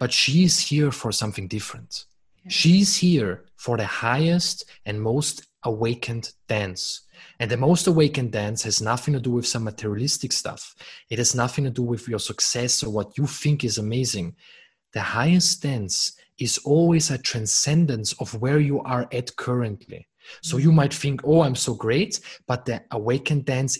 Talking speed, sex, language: 175 wpm, male, English